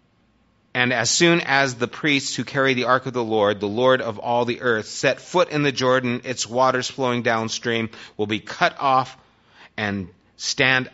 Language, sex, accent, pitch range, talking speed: English, male, American, 110-140 Hz, 185 wpm